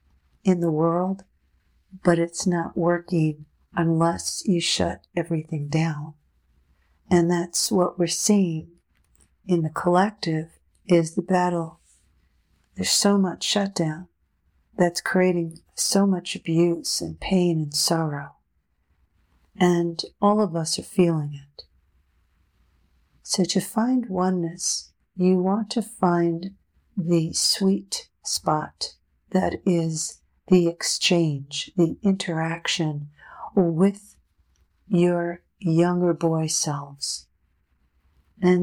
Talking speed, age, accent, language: 105 wpm, 50-69, American, English